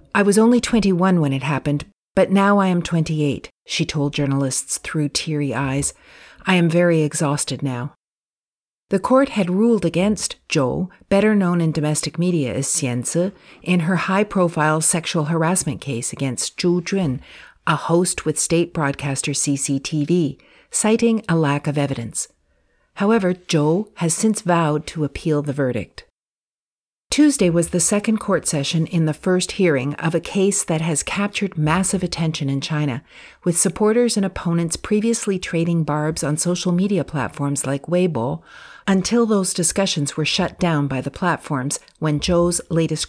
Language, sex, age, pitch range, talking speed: English, female, 50-69, 145-190 Hz, 155 wpm